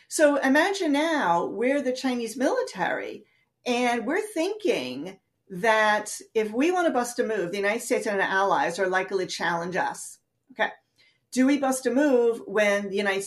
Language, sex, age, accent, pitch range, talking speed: English, female, 40-59, American, 195-285 Hz, 170 wpm